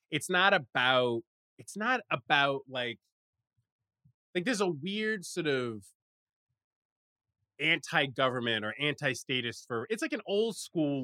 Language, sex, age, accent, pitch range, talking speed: English, male, 20-39, American, 105-135 Hz, 120 wpm